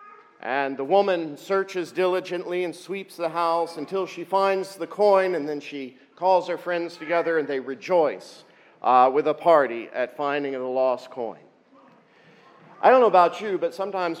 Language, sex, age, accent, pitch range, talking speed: English, male, 50-69, American, 140-180 Hz, 170 wpm